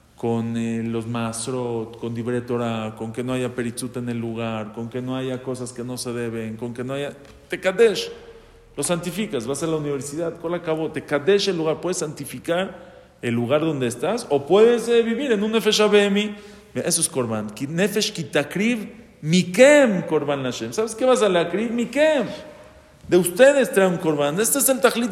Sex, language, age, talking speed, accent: male, English, 40-59, 180 wpm, Mexican